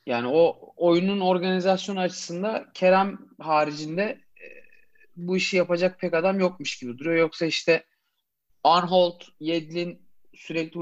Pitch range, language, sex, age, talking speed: 150-200 Hz, Turkish, male, 40-59, 115 wpm